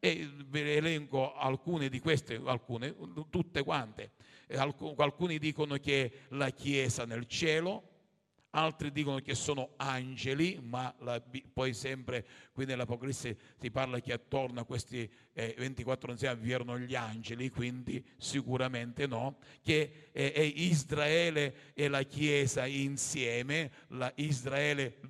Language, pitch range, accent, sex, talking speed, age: Italian, 115-145 Hz, native, male, 130 wpm, 50-69